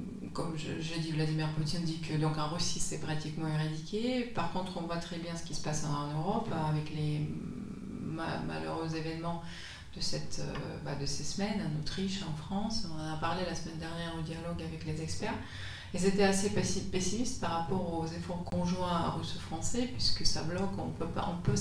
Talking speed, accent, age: 200 wpm, French, 30-49